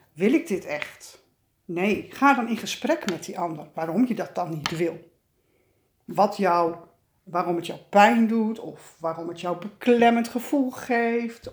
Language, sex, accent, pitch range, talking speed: Dutch, female, Dutch, 165-235 Hz, 165 wpm